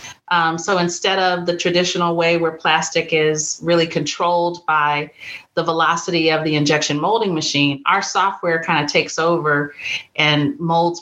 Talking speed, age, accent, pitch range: 150 wpm, 40-59, American, 155-185 Hz